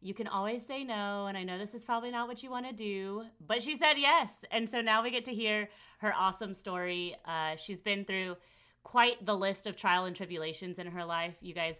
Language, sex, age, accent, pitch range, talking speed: English, female, 30-49, American, 155-200 Hz, 240 wpm